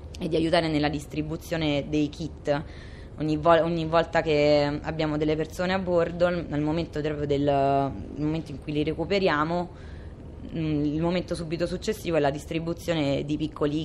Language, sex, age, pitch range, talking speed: Italian, female, 20-39, 150-170 Hz, 160 wpm